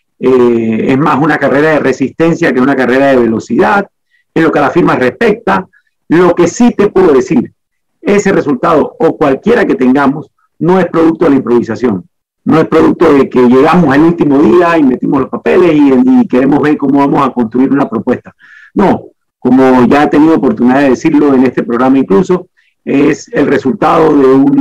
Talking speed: 185 wpm